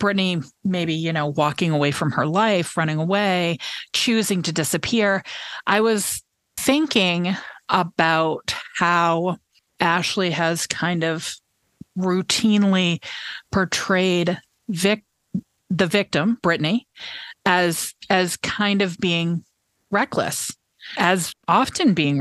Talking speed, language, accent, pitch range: 105 wpm, English, American, 165-215 Hz